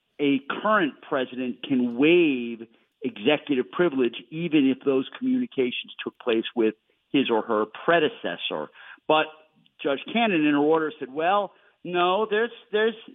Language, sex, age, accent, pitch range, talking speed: English, male, 50-69, American, 125-185 Hz, 130 wpm